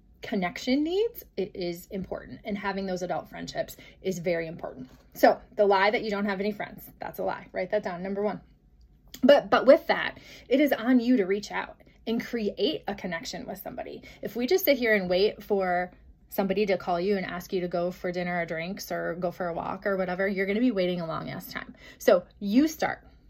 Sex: female